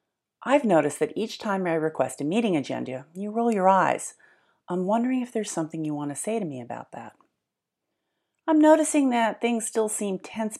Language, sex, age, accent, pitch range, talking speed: English, female, 40-59, American, 155-220 Hz, 190 wpm